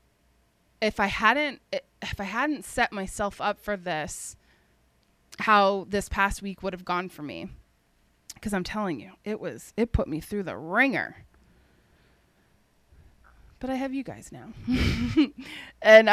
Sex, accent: female, American